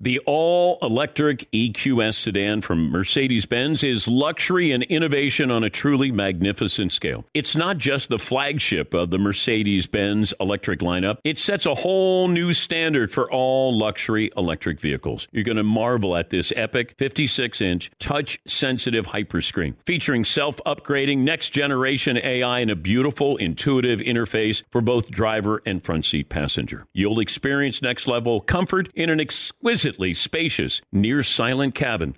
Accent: American